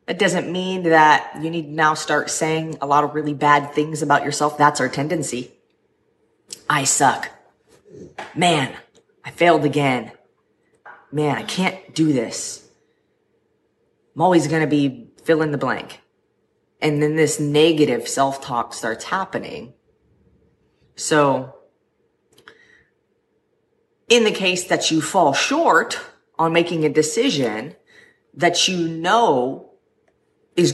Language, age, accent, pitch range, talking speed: English, 30-49, American, 150-210 Hz, 125 wpm